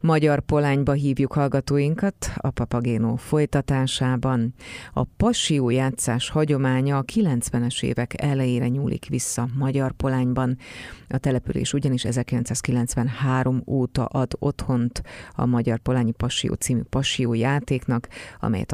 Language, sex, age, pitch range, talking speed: Hungarian, female, 30-49, 120-140 Hz, 110 wpm